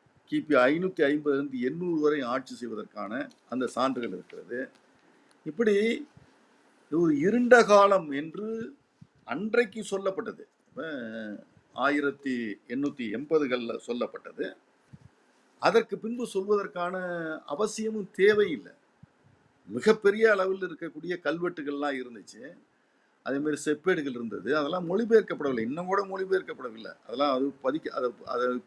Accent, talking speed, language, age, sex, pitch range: native, 90 wpm, Tamil, 50-69, male, 140-220 Hz